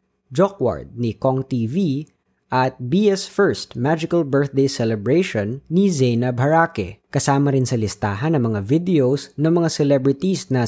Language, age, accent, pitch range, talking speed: Filipino, 20-39, native, 115-160 Hz, 135 wpm